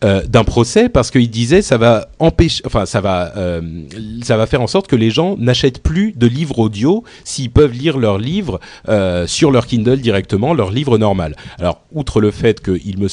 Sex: male